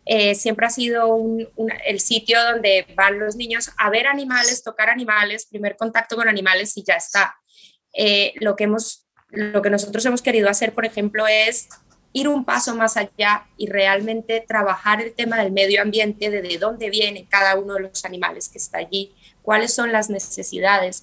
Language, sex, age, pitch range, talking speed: Spanish, female, 20-39, 200-225 Hz, 190 wpm